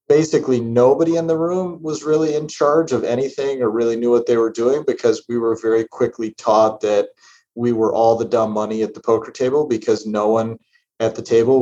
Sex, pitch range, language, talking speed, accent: male, 110-145 Hz, English, 210 wpm, American